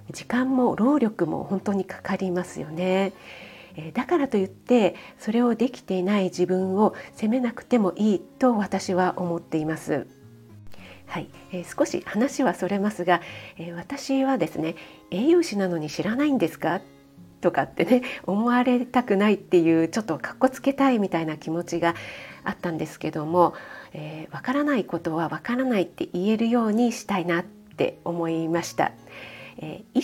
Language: Japanese